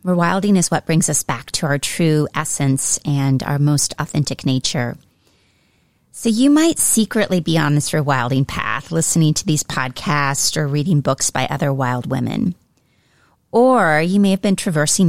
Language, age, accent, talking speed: English, 30-49, American, 165 wpm